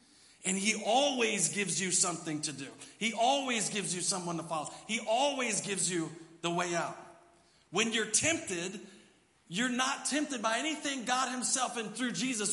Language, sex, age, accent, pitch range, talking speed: English, male, 40-59, American, 175-255 Hz, 170 wpm